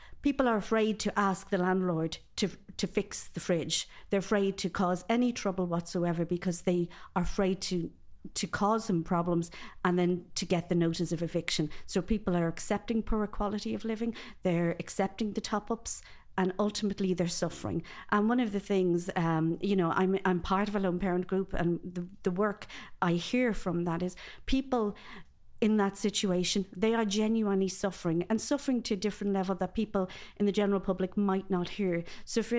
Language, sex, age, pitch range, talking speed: English, female, 50-69, 175-210 Hz, 190 wpm